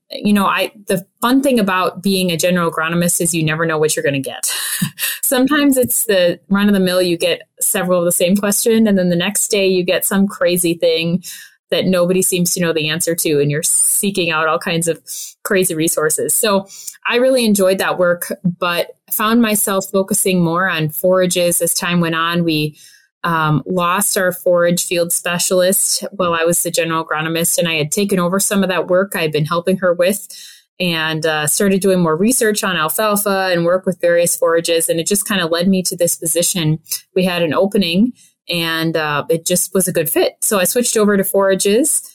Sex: female